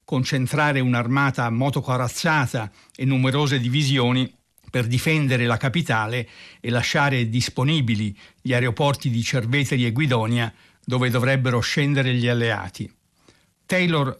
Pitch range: 120-150 Hz